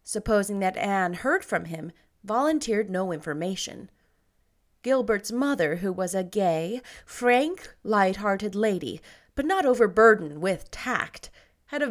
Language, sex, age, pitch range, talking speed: English, female, 30-49, 175-250 Hz, 125 wpm